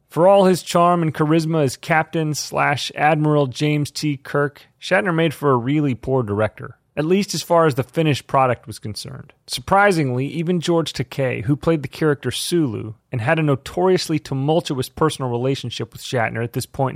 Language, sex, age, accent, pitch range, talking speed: English, male, 30-49, American, 125-160 Hz, 175 wpm